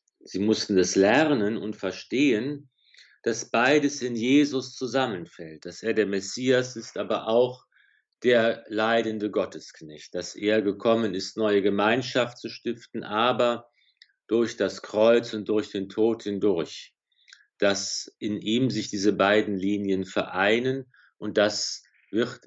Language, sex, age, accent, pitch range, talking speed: German, male, 50-69, German, 100-125 Hz, 130 wpm